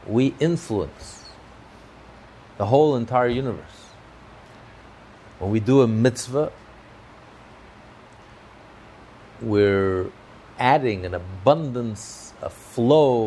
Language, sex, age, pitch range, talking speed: English, male, 50-69, 100-125 Hz, 75 wpm